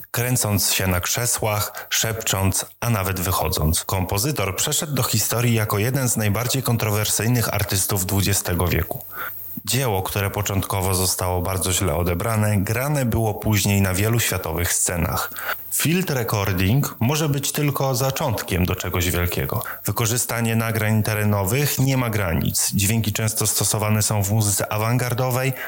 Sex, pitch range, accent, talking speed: male, 100-125 Hz, native, 130 wpm